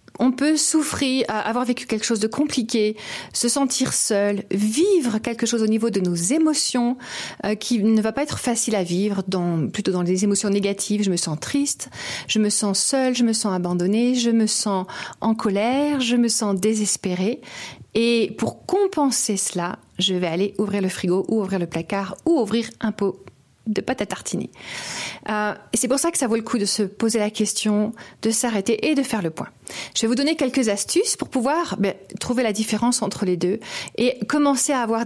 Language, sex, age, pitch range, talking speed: French, female, 40-59, 200-255 Hz, 205 wpm